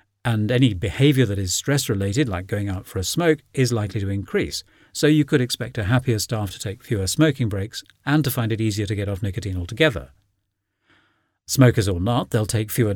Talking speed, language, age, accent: 205 wpm, English, 50-69, British